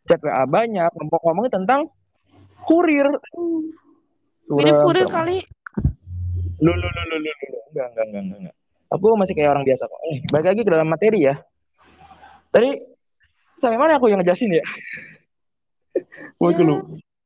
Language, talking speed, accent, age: Indonesian, 100 wpm, native, 20-39